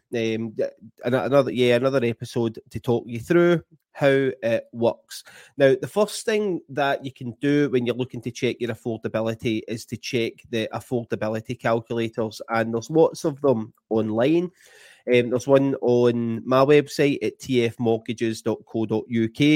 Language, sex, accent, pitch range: English, male, British, 110-140 Hz